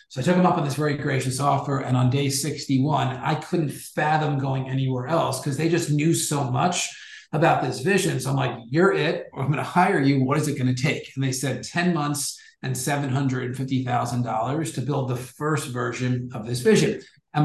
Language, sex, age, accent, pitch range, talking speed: English, male, 50-69, American, 130-155 Hz, 205 wpm